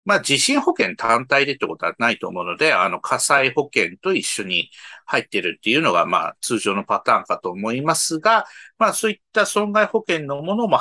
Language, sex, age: Japanese, male, 50-69